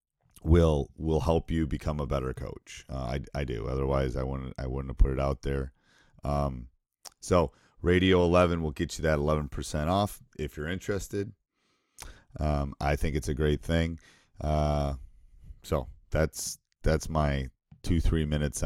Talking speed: 160 wpm